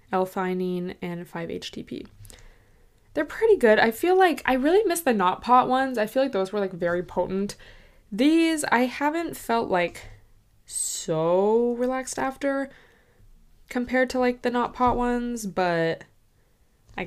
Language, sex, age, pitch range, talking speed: English, female, 20-39, 180-245 Hz, 145 wpm